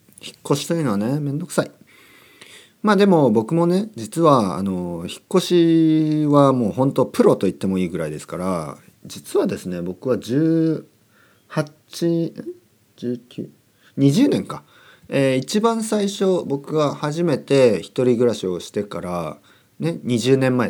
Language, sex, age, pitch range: Japanese, male, 40-59, 110-160 Hz